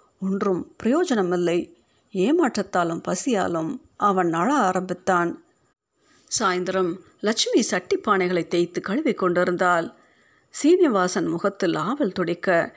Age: 50-69